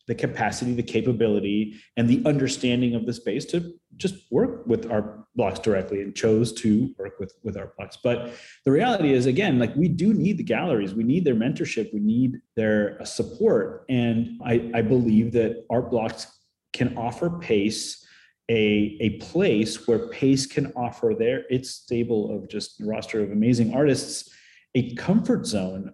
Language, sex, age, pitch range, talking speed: English, male, 30-49, 105-140 Hz, 170 wpm